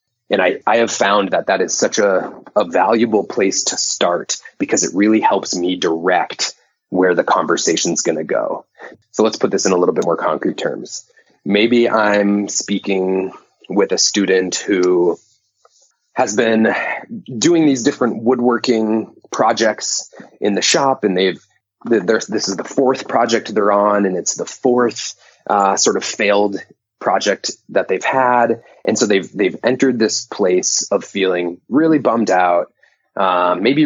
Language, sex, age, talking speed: English, male, 30-49, 160 wpm